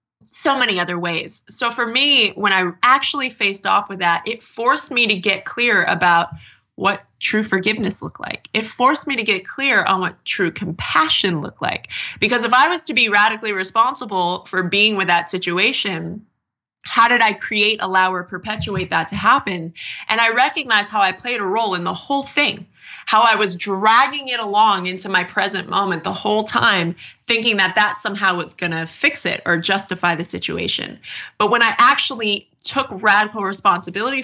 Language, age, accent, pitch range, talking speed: English, 20-39, American, 180-225 Hz, 185 wpm